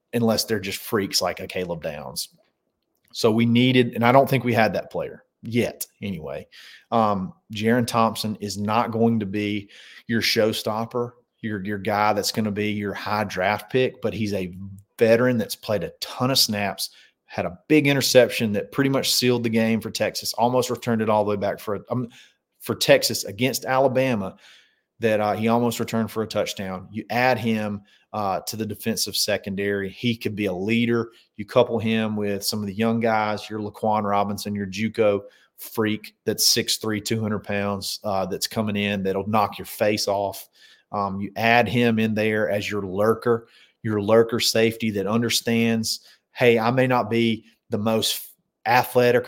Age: 30-49